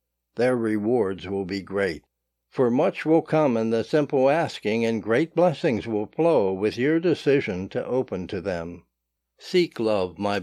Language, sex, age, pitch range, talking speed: English, male, 60-79, 110-150 Hz, 160 wpm